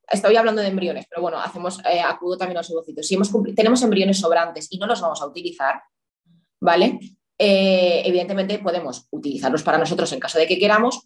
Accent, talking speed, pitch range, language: Spanish, 200 wpm, 165-200 Hz, Spanish